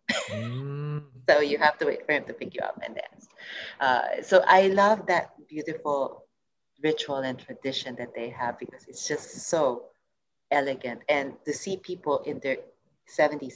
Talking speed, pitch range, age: 165 wpm, 135-180 Hz, 30-49